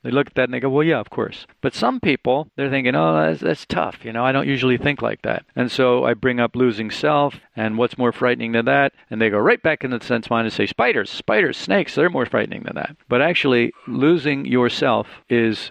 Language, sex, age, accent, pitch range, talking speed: English, male, 50-69, American, 115-155 Hz, 250 wpm